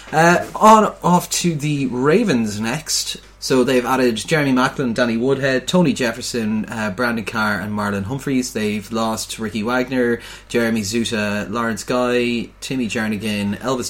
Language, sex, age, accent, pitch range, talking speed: English, male, 30-49, Irish, 105-125 Hz, 140 wpm